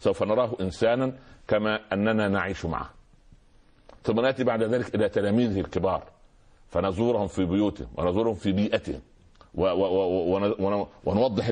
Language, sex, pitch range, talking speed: Arabic, male, 95-115 Hz, 110 wpm